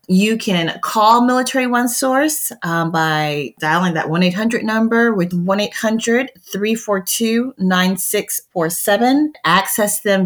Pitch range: 175-225 Hz